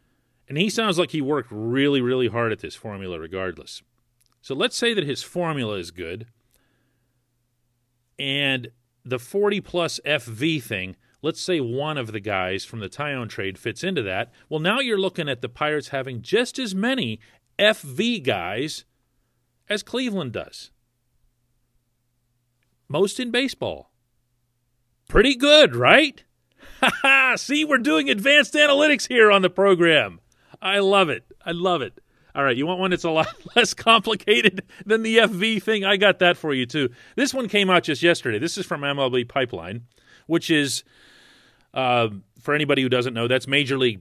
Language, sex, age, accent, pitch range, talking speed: English, male, 40-59, American, 120-175 Hz, 160 wpm